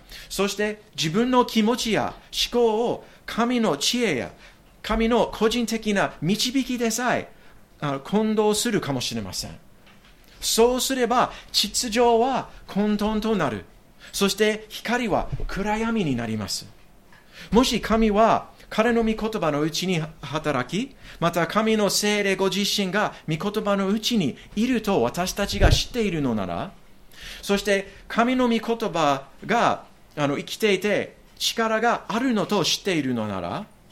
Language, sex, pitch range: English, male, 160-225 Hz